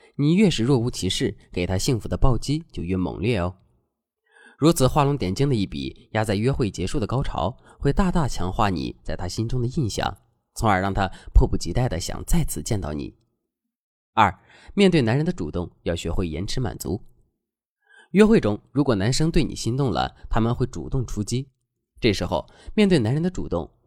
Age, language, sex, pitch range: 20-39, Chinese, male, 95-140 Hz